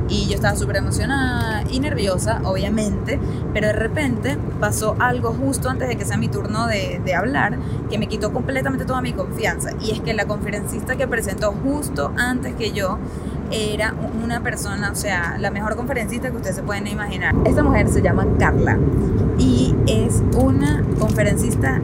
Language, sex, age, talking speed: Spanish, female, 20-39, 175 wpm